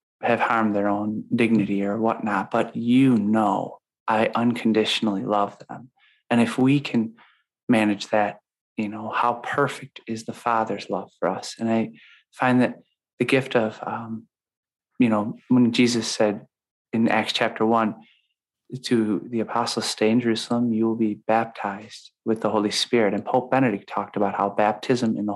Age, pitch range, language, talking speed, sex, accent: 30-49, 110-125 Hz, English, 165 wpm, male, American